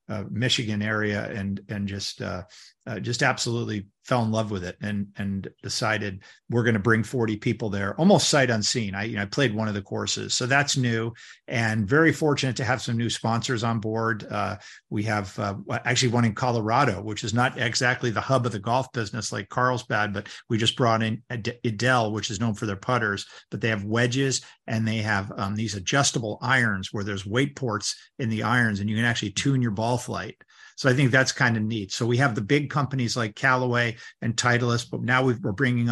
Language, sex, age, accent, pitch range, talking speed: English, male, 50-69, American, 110-125 Hz, 215 wpm